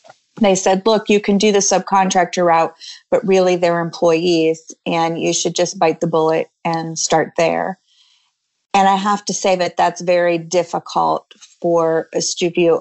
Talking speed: 165 wpm